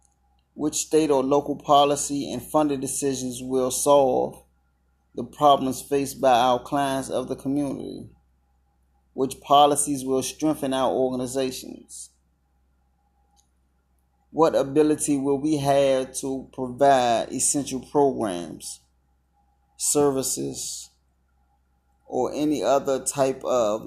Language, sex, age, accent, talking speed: English, male, 30-49, American, 100 wpm